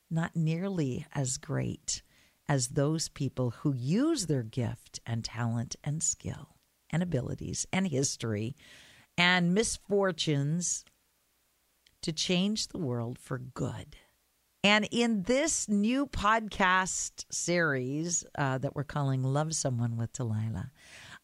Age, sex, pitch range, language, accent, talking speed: 50-69, female, 130-185 Hz, English, American, 115 wpm